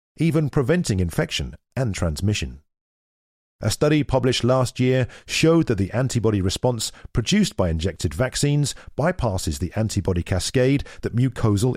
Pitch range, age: 90-130 Hz, 40-59